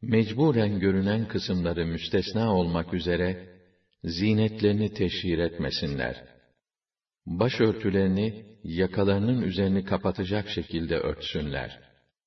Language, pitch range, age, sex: Arabic, 85-105 Hz, 60-79, male